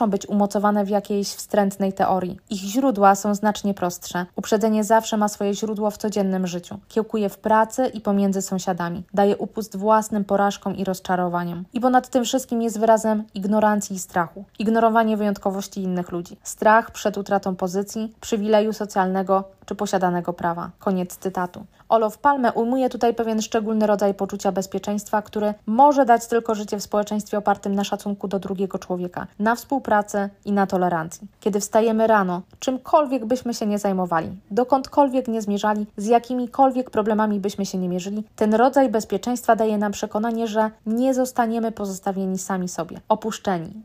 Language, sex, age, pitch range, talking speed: Polish, female, 20-39, 195-225 Hz, 155 wpm